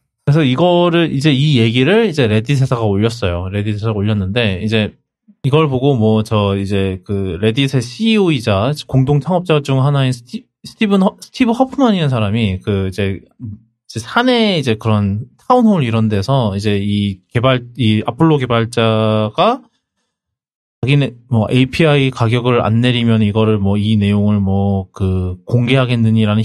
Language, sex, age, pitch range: Korean, male, 20-39, 110-145 Hz